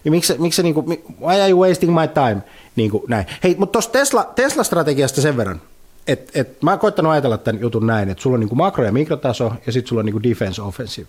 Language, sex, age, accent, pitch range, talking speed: Finnish, male, 30-49, native, 105-135 Hz, 220 wpm